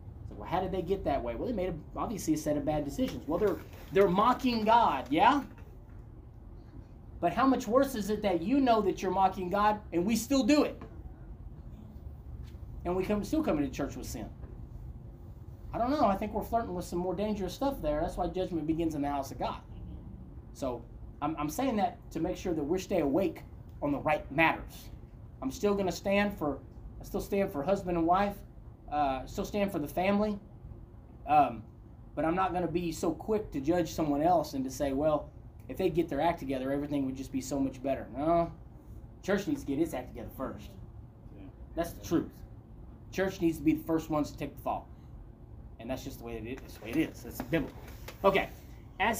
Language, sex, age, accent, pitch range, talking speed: English, male, 30-49, American, 135-205 Hz, 215 wpm